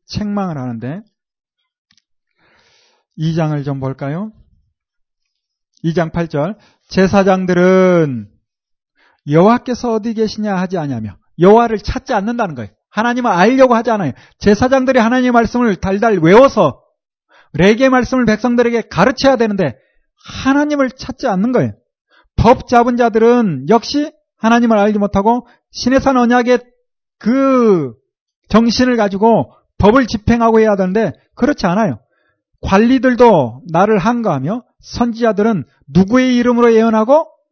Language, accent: Korean, native